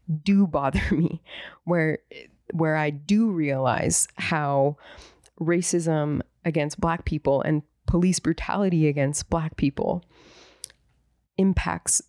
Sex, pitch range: female, 150-185 Hz